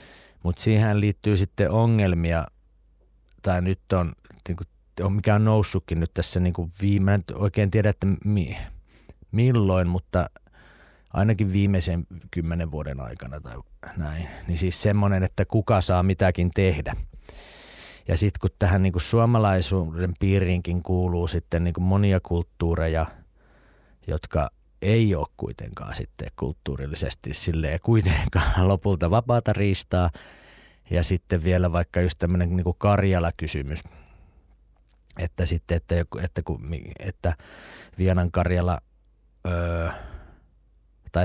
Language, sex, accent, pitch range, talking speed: Finnish, male, native, 85-95 Hz, 115 wpm